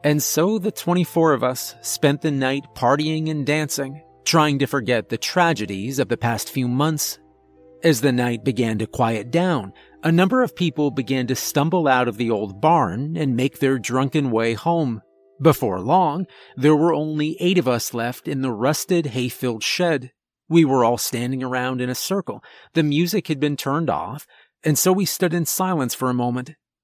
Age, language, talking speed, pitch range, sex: 30-49, English, 190 wpm, 125-165 Hz, male